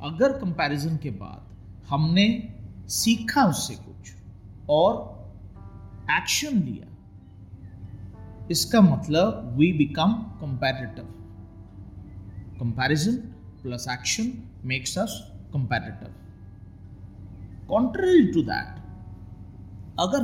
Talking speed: 75 wpm